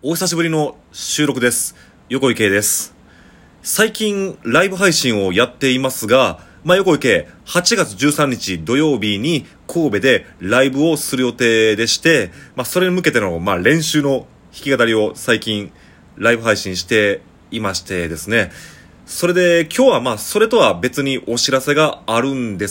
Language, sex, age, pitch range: Japanese, male, 30-49, 110-170 Hz